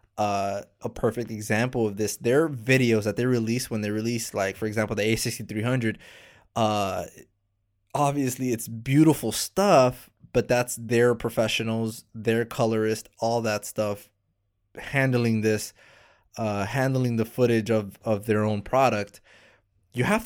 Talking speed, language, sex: 135 wpm, English, male